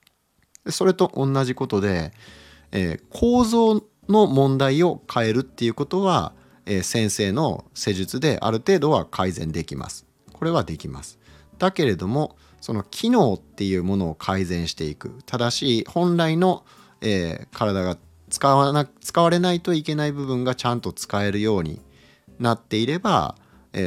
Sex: male